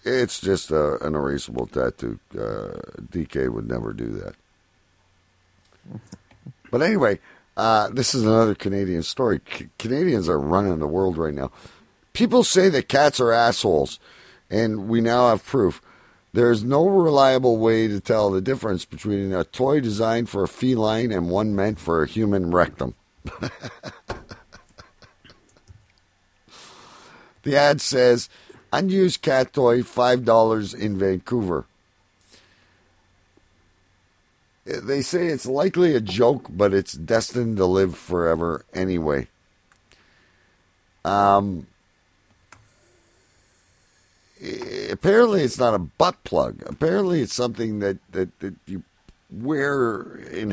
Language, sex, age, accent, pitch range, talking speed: English, male, 50-69, American, 95-120 Hz, 115 wpm